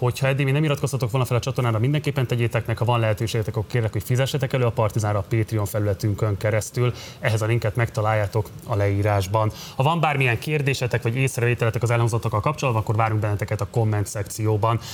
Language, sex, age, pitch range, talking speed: Hungarian, male, 20-39, 110-130 Hz, 190 wpm